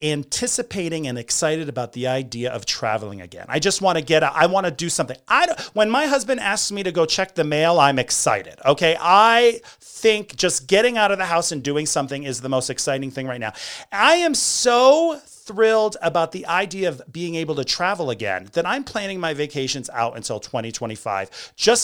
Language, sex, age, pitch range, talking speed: English, male, 40-59, 135-225 Hz, 205 wpm